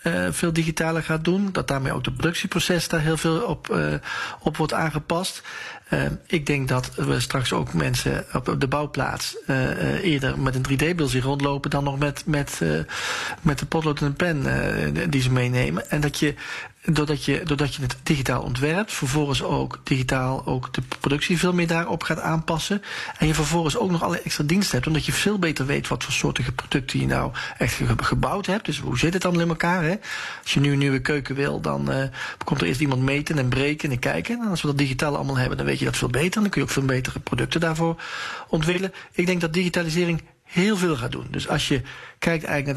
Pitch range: 130-165 Hz